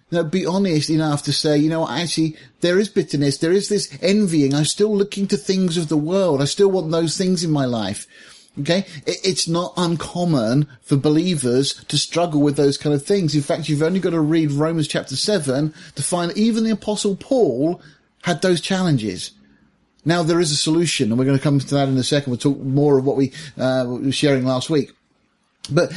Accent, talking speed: British, 210 wpm